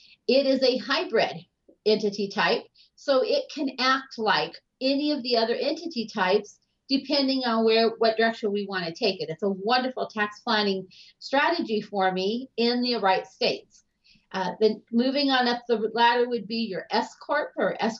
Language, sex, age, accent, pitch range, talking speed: English, female, 40-59, American, 210-260 Hz, 175 wpm